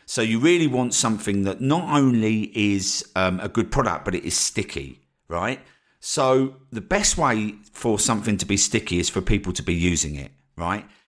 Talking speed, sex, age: 190 wpm, male, 50-69